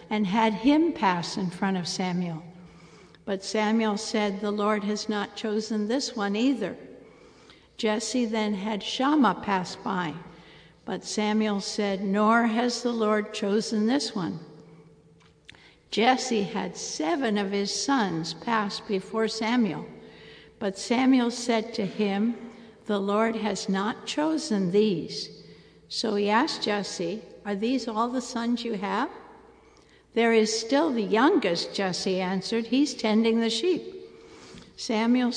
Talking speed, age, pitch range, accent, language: 130 wpm, 60-79, 195-230 Hz, American, English